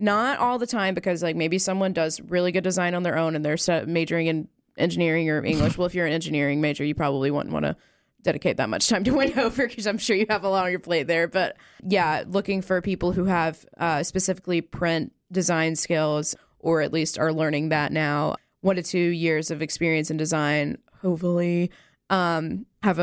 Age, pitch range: 20-39, 160-195 Hz